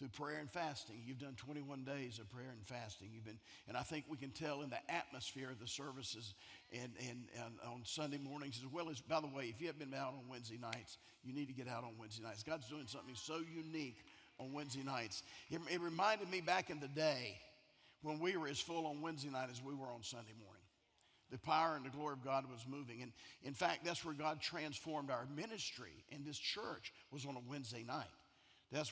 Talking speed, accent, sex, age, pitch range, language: 230 wpm, American, male, 50-69, 120-150 Hz, English